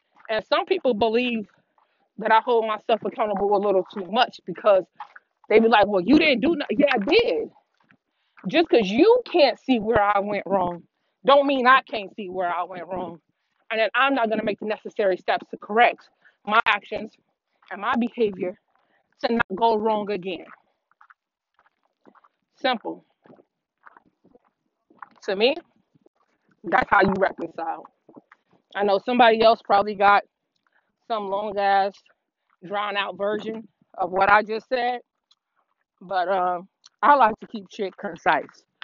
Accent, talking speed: American, 145 wpm